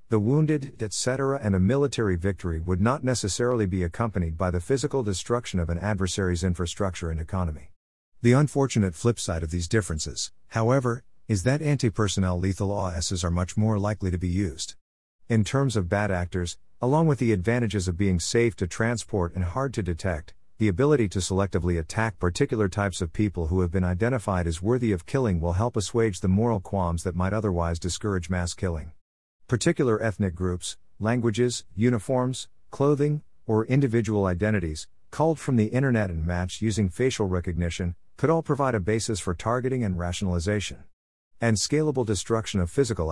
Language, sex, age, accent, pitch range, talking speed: English, male, 50-69, American, 90-115 Hz, 170 wpm